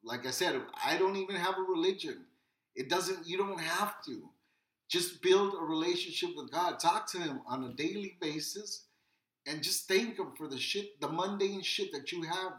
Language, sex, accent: English, male, American